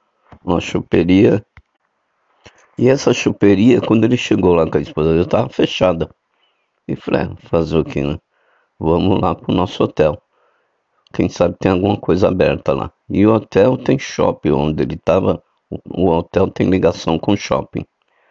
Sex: male